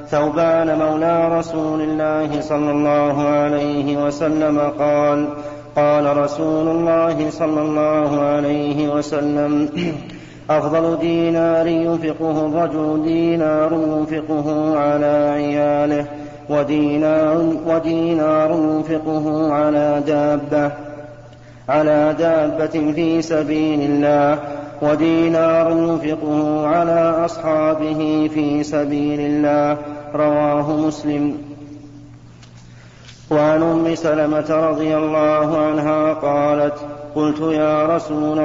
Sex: male